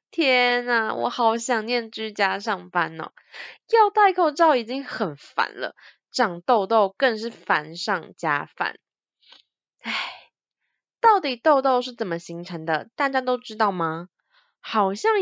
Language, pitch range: Chinese, 195-285 Hz